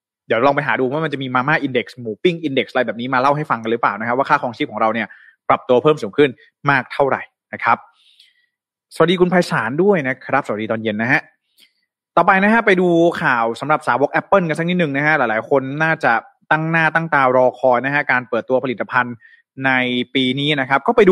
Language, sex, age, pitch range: Thai, male, 20-39, 130-180 Hz